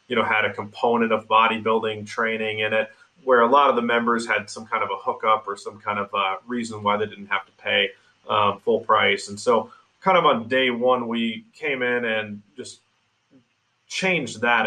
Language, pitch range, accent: English, 110-125 Hz, American